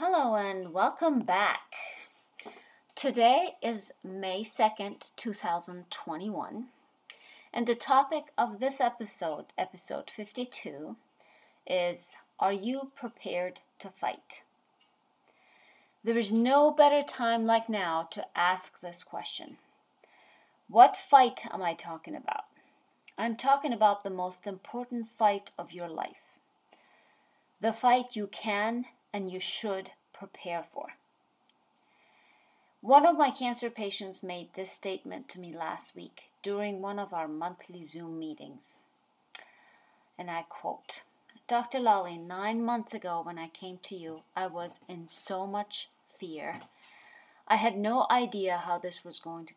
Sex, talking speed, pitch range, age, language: female, 130 wpm, 175-235 Hz, 30-49, English